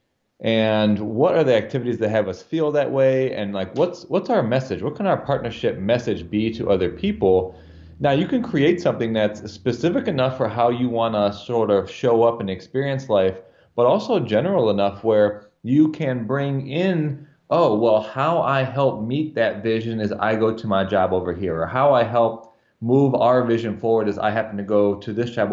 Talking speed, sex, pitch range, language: 200 wpm, male, 105-130 Hz, English